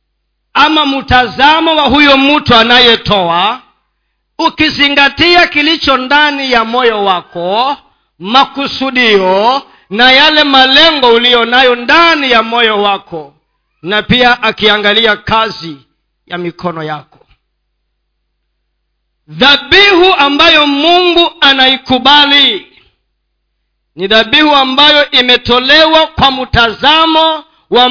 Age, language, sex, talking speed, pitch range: 40-59, Swahili, male, 85 wpm, 190-285 Hz